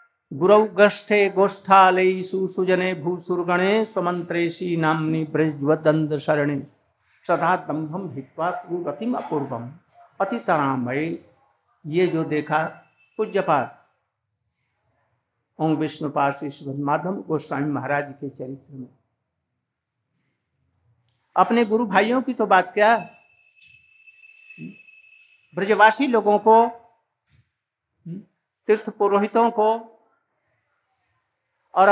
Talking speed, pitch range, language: 65 wpm, 150-210 Hz, Hindi